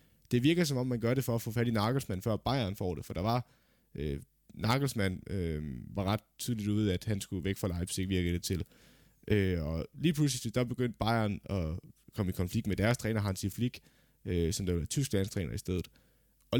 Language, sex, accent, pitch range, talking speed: Danish, male, native, 100-125 Hz, 225 wpm